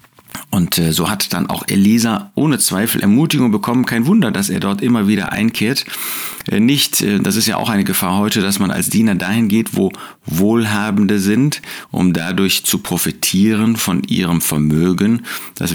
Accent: German